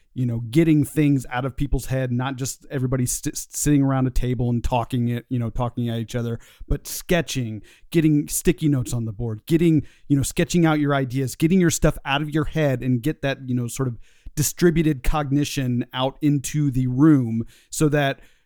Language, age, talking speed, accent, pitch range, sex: English, 40-59, 200 wpm, American, 125-155 Hz, male